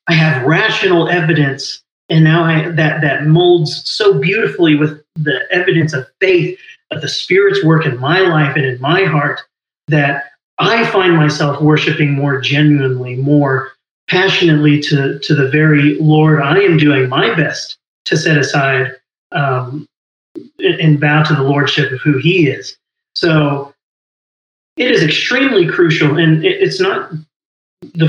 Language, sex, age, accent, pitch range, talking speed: English, male, 30-49, American, 145-170 Hz, 150 wpm